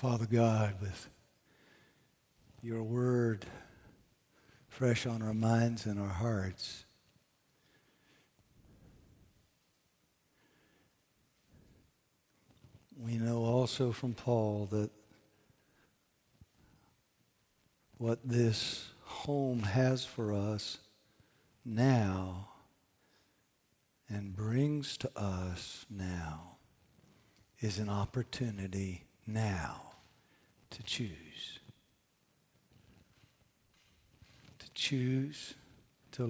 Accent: American